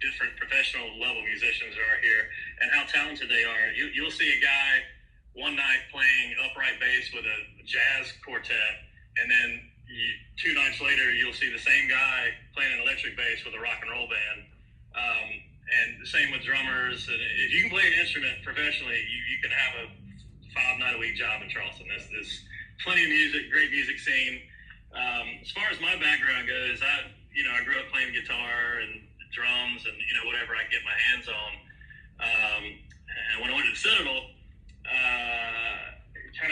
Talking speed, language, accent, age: 190 wpm, English, American, 30-49